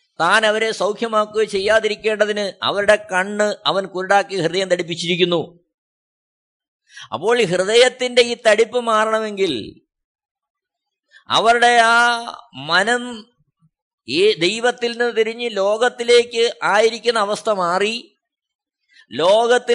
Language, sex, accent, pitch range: Malayalam, male, native, 210-240 Hz